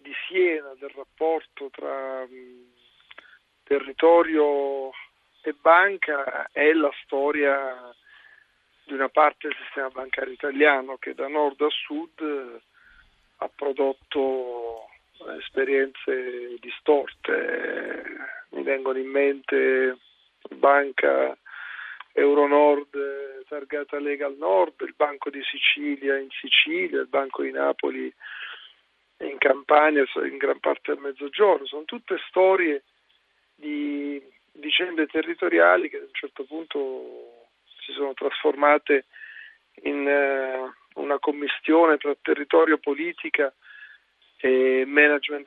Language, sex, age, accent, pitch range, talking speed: Italian, male, 40-59, native, 135-165 Hz, 100 wpm